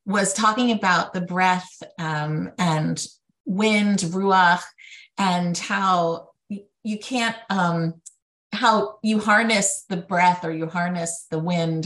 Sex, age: female, 30-49